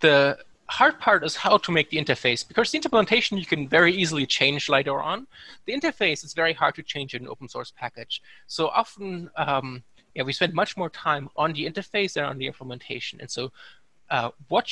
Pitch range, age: 130-180 Hz, 20-39